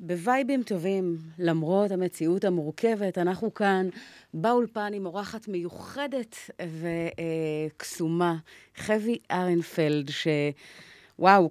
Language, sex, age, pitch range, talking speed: Hebrew, female, 30-49, 160-205 Hz, 85 wpm